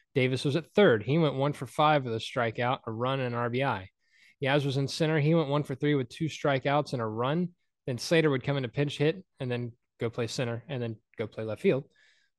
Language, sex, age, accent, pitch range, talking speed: English, male, 20-39, American, 120-160 Hz, 245 wpm